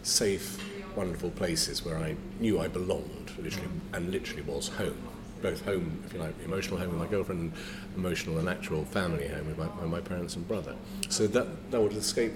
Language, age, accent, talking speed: English, 40-59, British, 200 wpm